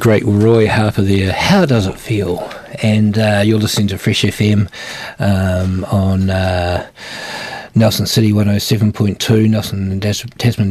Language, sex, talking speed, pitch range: English, male, 140 wpm, 105-120 Hz